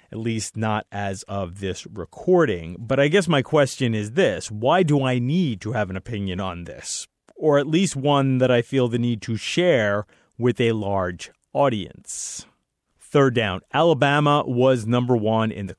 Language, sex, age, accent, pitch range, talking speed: English, male, 30-49, American, 110-150 Hz, 180 wpm